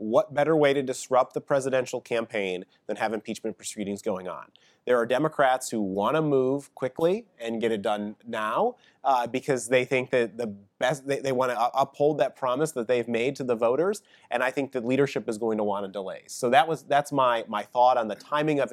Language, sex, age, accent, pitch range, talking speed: English, male, 30-49, American, 115-140 Hz, 220 wpm